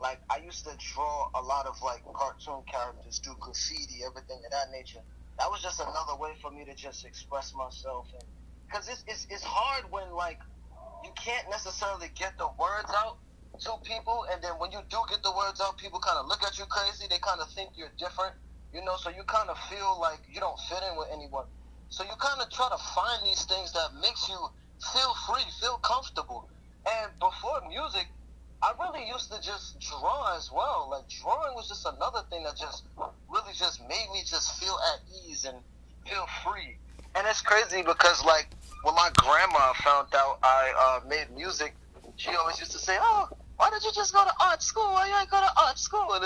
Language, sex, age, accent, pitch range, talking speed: English, male, 20-39, American, 155-255 Hz, 210 wpm